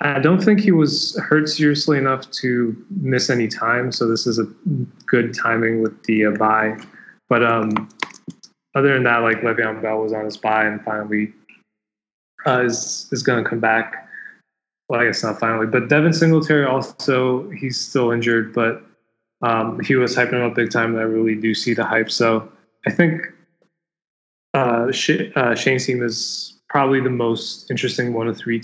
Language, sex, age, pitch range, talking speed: English, male, 20-39, 110-130 Hz, 180 wpm